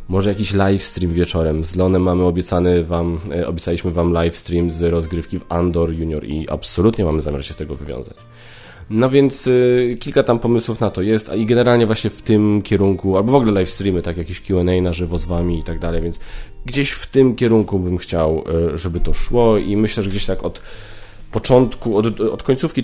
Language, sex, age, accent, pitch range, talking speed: Polish, male, 20-39, native, 90-115 Hz, 210 wpm